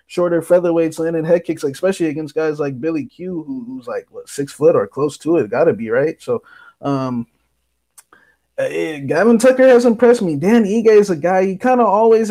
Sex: male